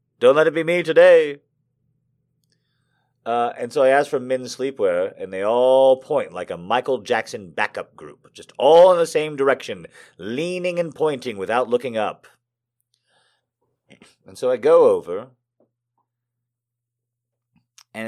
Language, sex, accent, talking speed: English, male, American, 140 wpm